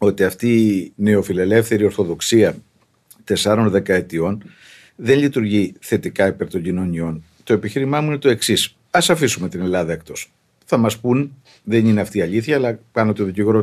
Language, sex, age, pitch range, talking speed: Greek, male, 50-69, 100-140 Hz, 160 wpm